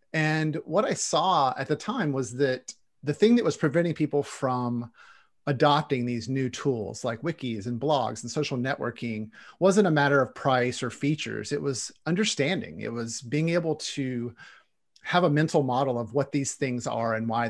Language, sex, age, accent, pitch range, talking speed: English, male, 40-59, American, 125-150 Hz, 180 wpm